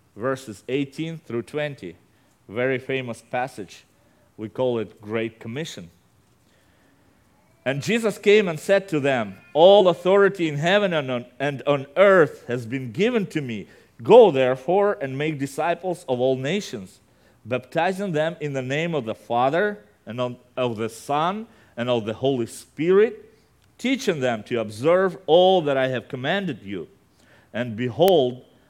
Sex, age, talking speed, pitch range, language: male, 40-59, 140 wpm, 115-170 Hz, English